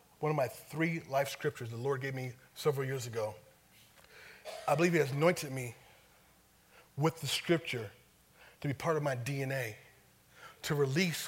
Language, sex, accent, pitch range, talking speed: English, male, American, 130-170 Hz, 160 wpm